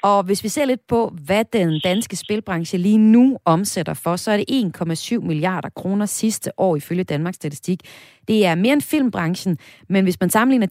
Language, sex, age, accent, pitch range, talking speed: Danish, female, 30-49, native, 160-220 Hz, 190 wpm